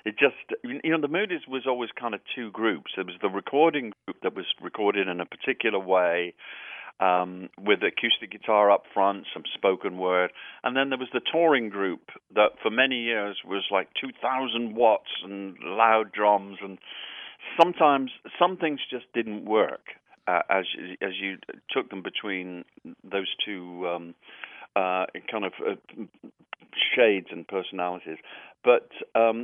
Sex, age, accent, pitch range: male, 50-69, British, 95-130 Hz